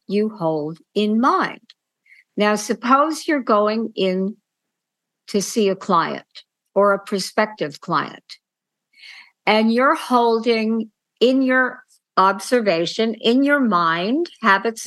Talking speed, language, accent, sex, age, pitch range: 110 wpm, English, American, female, 50-69, 180-225 Hz